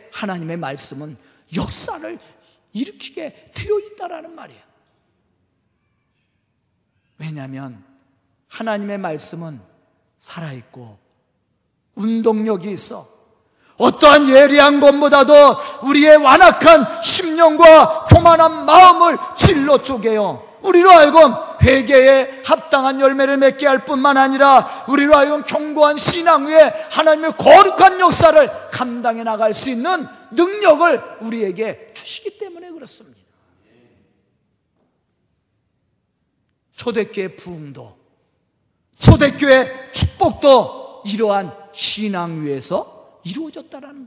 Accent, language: native, Korean